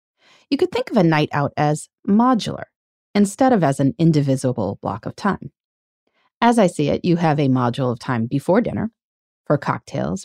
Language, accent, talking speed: English, American, 180 wpm